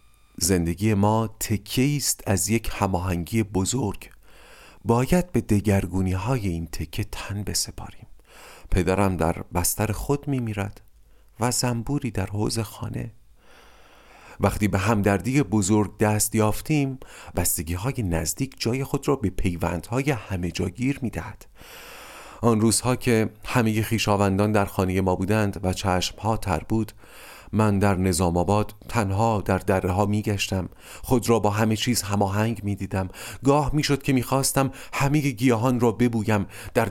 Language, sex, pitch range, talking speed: Persian, male, 95-115 Hz, 135 wpm